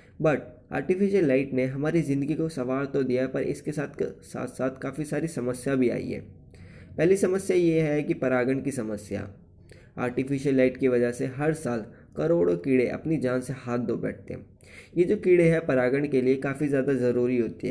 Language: Hindi